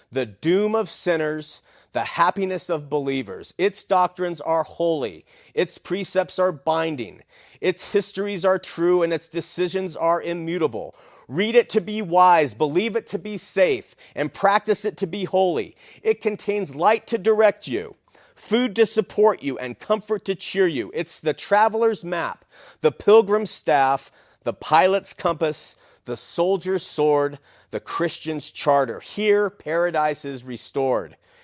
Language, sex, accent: English, male, American